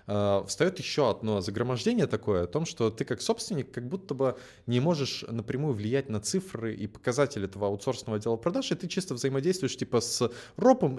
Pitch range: 100-130 Hz